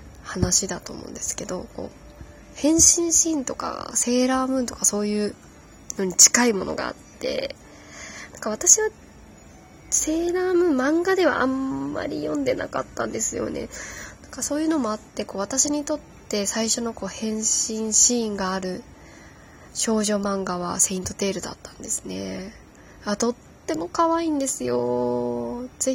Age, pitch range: 20-39, 200-280 Hz